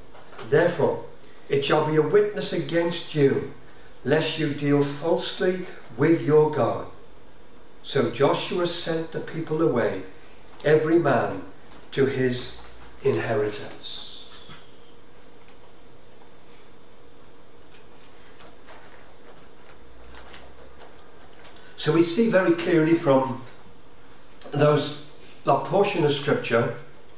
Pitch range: 140-180 Hz